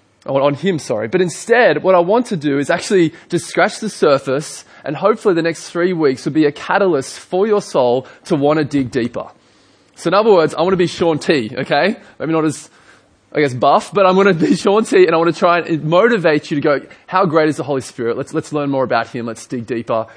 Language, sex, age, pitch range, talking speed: English, male, 20-39, 140-180 Hz, 245 wpm